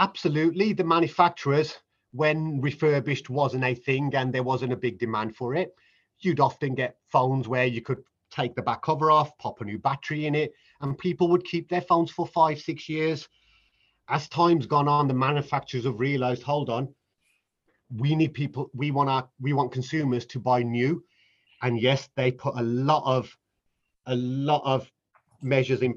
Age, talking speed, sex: 30-49, 180 wpm, male